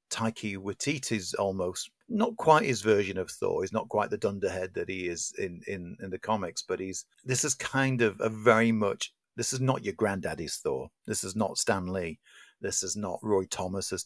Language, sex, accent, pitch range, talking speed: English, male, British, 100-120 Hz, 200 wpm